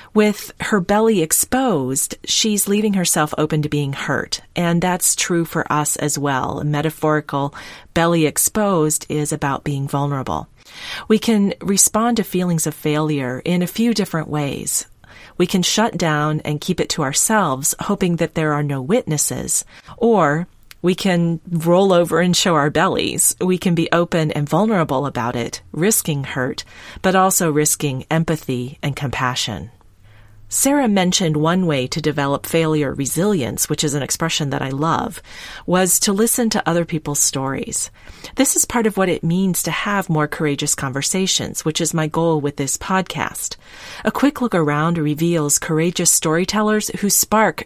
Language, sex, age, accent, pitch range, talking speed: English, female, 40-59, American, 145-185 Hz, 160 wpm